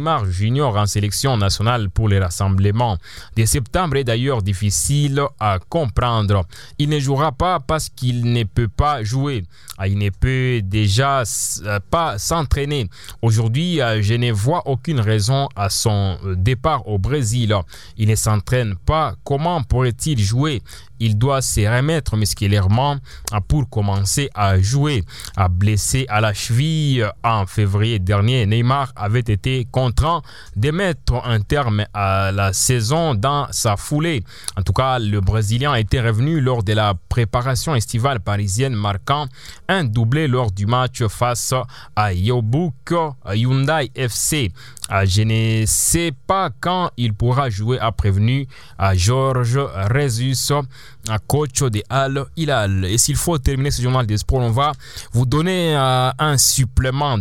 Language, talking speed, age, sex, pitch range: English, 140 wpm, 20-39, male, 105-135 Hz